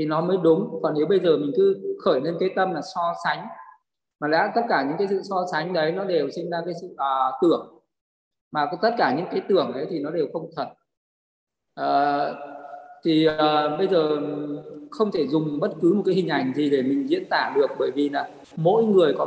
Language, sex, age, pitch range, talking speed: Vietnamese, male, 20-39, 150-205 Hz, 230 wpm